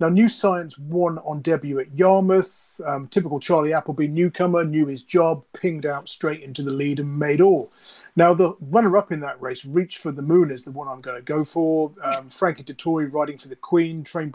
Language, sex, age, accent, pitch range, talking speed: English, male, 30-49, British, 145-180 Hz, 215 wpm